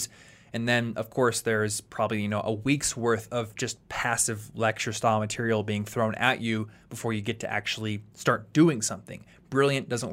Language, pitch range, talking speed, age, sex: English, 110-135 Hz, 185 wpm, 20-39, male